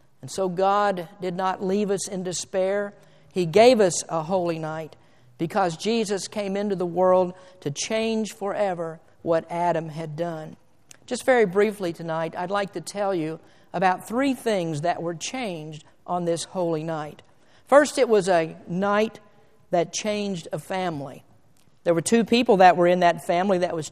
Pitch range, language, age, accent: 180-230 Hz, English, 50-69, American